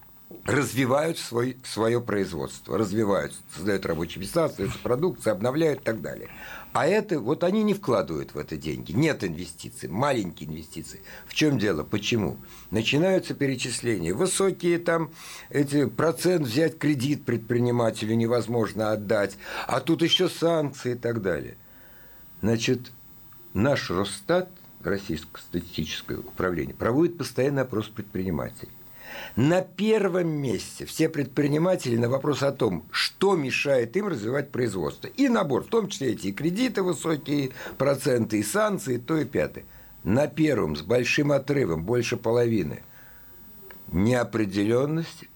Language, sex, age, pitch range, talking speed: Russian, male, 60-79, 115-165 Hz, 125 wpm